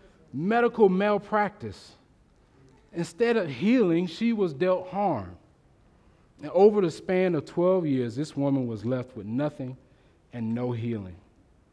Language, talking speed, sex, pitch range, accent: English, 130 wpm, male, 120-170 Hz, American